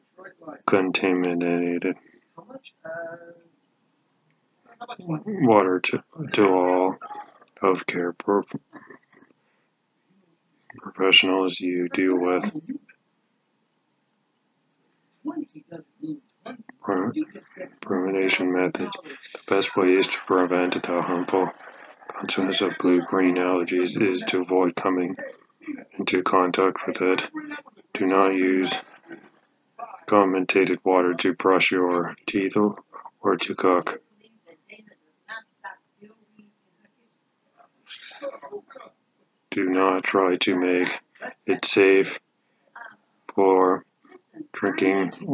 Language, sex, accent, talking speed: English, male, American, 75 wpm